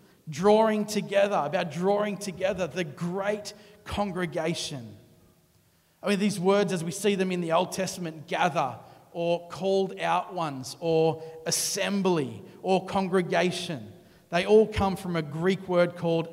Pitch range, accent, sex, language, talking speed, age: 155-190 Hz, Australian, male, English, 135 wpm, 30-49